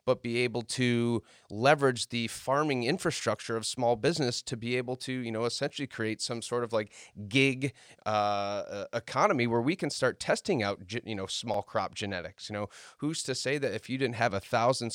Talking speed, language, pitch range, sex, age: 200 wpm, English, 100-125 Hz, male, 30-49